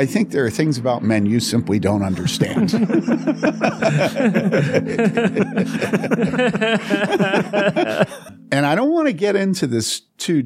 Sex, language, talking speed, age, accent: male, English, 115 wpm, 50-69, American